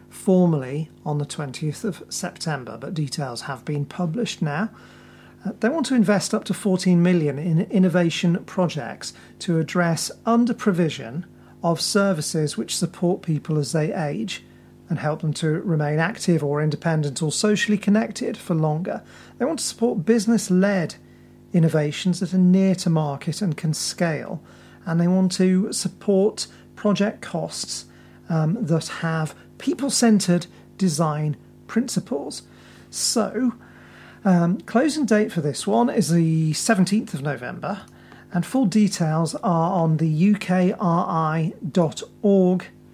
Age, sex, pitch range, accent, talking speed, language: 40-59, male, 155-195 Hz, British, 130 wpm, English